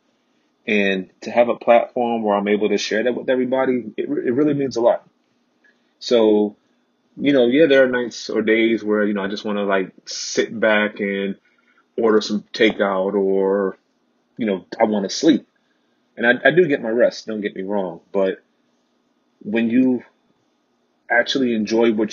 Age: 30-49